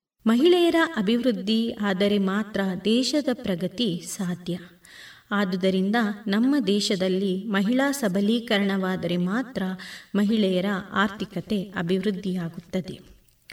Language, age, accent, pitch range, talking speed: Kannada, 20-39, native, 195-240 Hz, 70 wpm